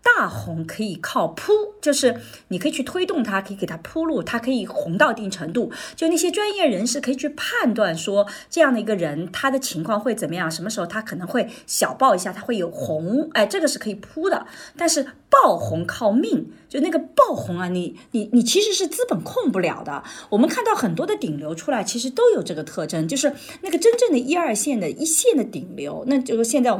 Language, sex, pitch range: Chinese, female, 200-320 Hz